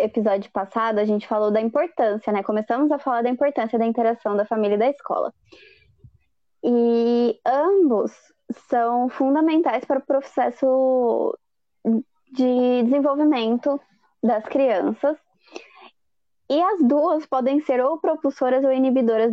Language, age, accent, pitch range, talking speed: Portuguese, 20-39, Brazilian, 215-280 Hz, 125 wpm